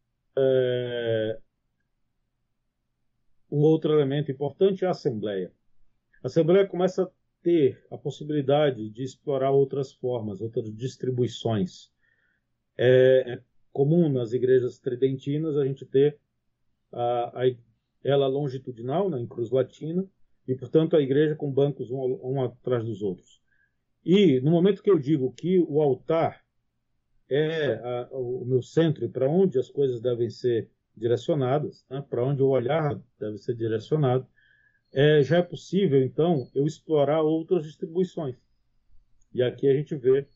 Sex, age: male, 40-59